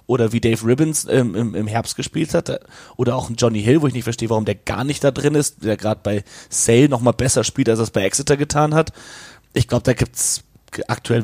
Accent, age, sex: German, 30-49, male